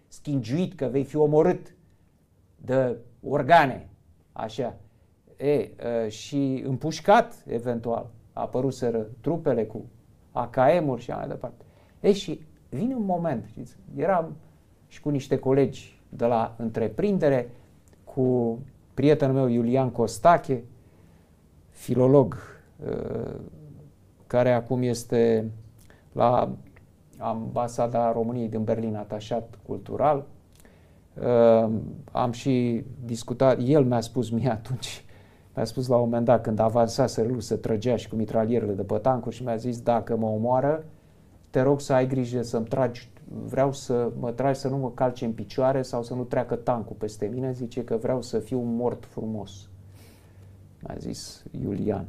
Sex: male